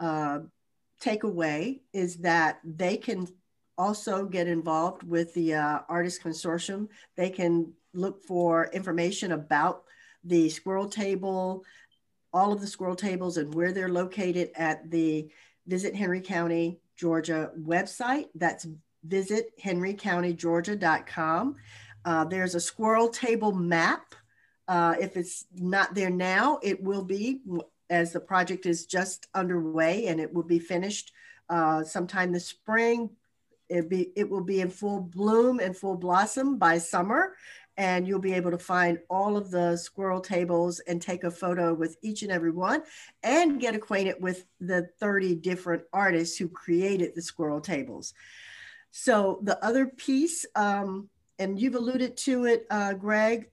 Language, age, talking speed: English, 50-69, 145 wpm